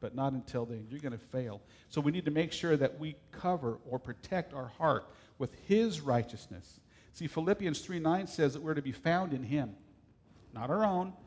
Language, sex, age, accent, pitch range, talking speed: English, male, 50-69, American, 125-170 Hz, 200 wpm